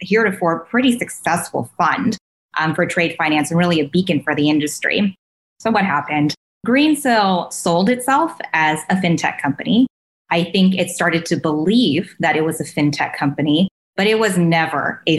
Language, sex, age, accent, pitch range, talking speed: English, female, 20-39, American, 150-190 Hz, 165 wpm